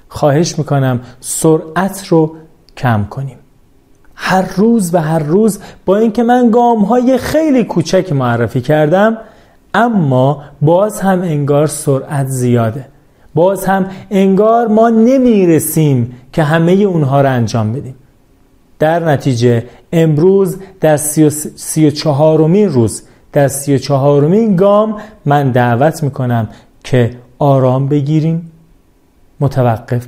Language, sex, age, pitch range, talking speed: Persian, male, 40-59, 130-195 Hz, 105 wpm